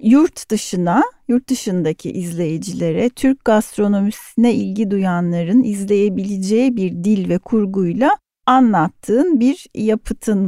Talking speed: 95 wpm